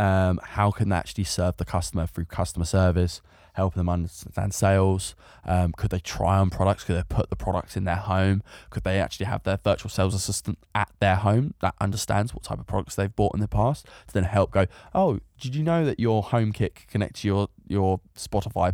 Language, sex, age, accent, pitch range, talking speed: English, male, 20-39, British, 90-100 Hz, 215 wpm